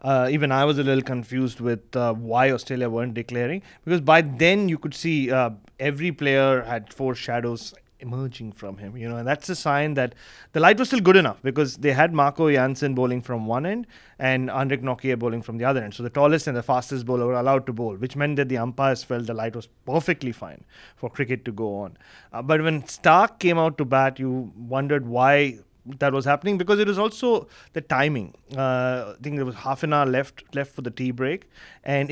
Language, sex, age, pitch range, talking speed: English, male, 30-49, 125-150 Hz, 225 wpm